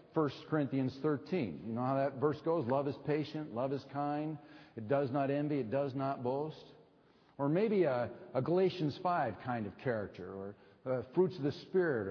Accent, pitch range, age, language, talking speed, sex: American, 120-160 Hz, 50-69, English, 190 wpm, male